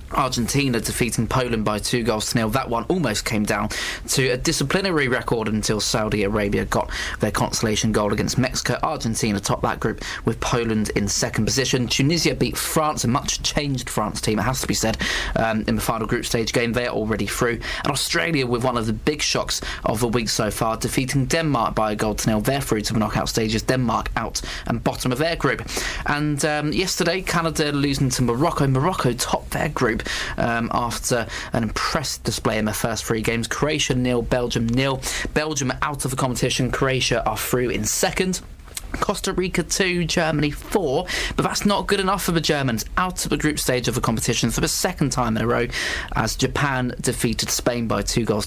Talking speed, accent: 200 wpm, British